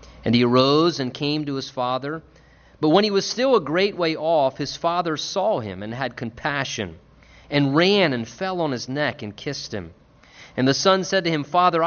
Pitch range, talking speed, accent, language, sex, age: 115-165 Hz, 205 wpm, American, English, male, 30-49